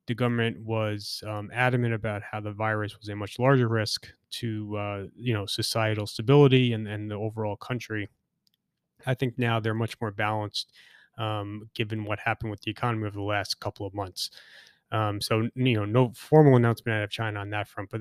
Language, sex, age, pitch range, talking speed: English, male, 20-39, 105-120 Hz, 195 wpm